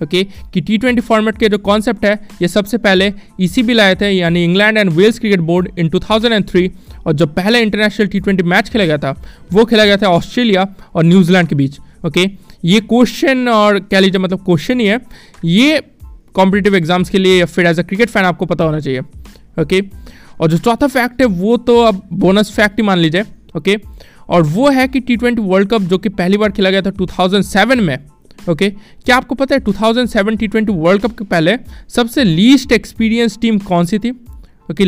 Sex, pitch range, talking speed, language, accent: male, 185-230 Hz, 205 wpm, Hindi, native